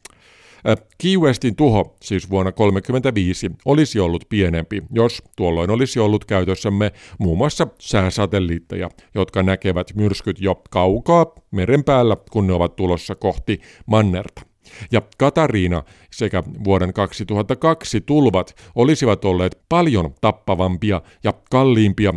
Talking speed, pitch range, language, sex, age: 115 wpm, 95-120 Hz, Finnish, male, 50-69